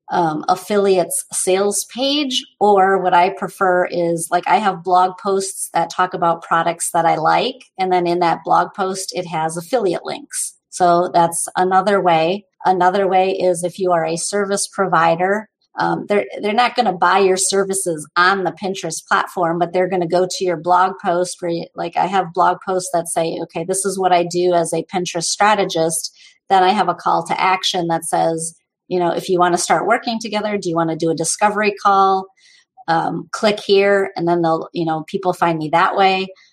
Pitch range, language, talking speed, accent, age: 170-195 Hz, English, 205 wpm, American, 40-59